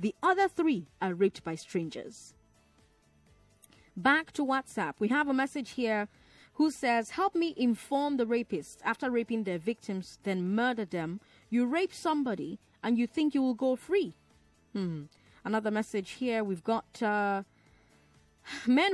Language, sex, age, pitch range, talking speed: English, female, 20-39, 180-255 Hz, 150 wpm